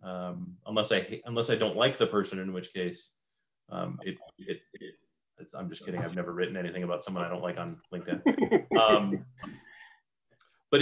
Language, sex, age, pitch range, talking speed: English, male, 30-49, 105-150 Hz, 185 wpm